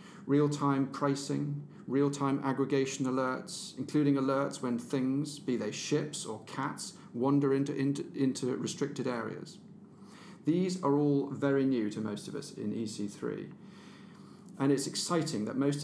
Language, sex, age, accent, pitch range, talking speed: English, male, 40-59, British, 120-150 Hz, 135 wpm